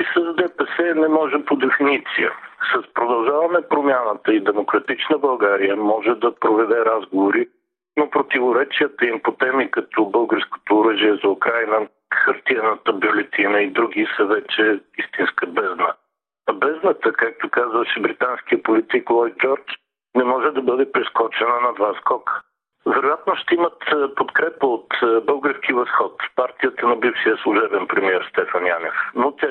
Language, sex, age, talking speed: Bulgarian, male, 60-79, 135 wpm